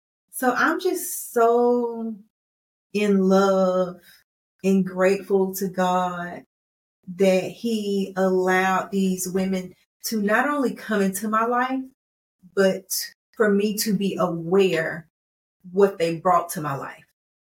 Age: 30-49